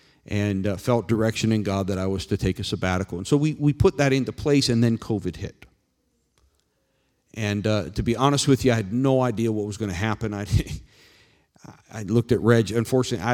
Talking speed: 210 wpm